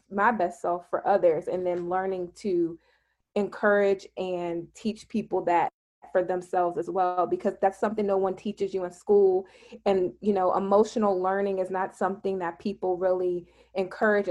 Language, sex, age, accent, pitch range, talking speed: English, female, 20-39, American, 180-205 Hz, 165 wpm